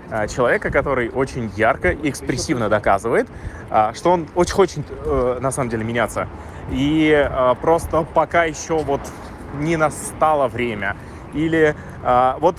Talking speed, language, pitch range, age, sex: 120 wpm, Russian, 110-160 Hz, 20-39, male